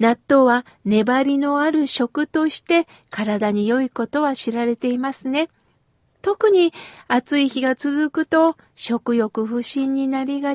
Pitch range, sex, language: 235-335 Hz, female, Japanese